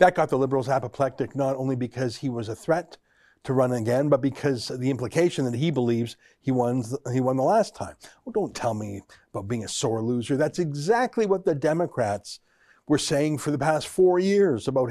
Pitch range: 125-170 Hz